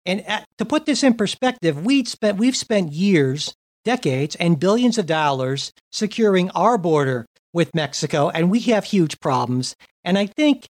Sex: male